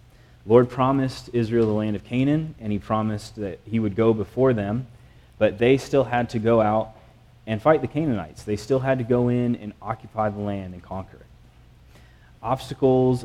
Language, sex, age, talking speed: English, male, 30-49, 185 wpm